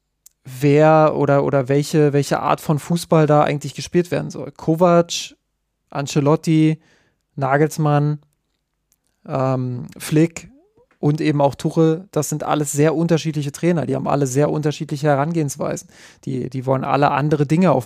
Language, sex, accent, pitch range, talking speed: German, male, German, 140-160 Hz, 140 wpm